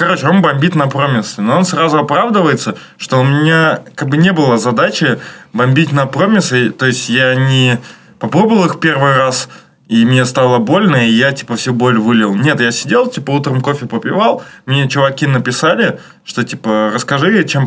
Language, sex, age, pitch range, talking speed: Russian, male, 20-39, 120-150 Hz, 175 wpm